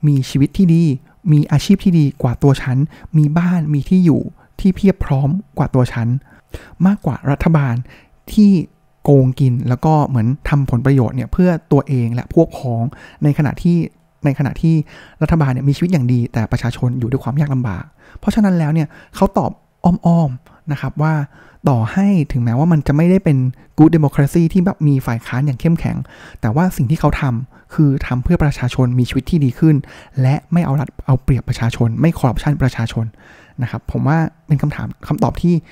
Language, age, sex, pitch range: Thai, 20-39, male, 130-165 Hz